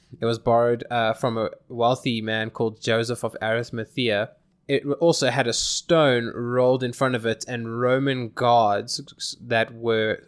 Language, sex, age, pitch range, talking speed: English, male, 20-39, 115-130 Hz, 160 wpm